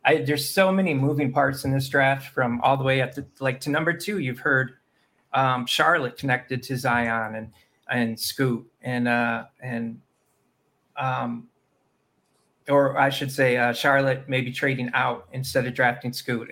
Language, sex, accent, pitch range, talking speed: English, male, American, 125-150 Hz, 165 wpm